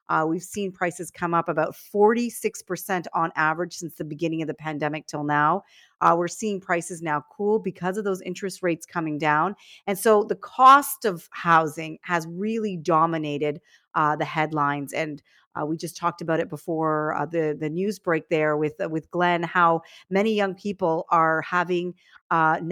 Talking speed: 180 wpm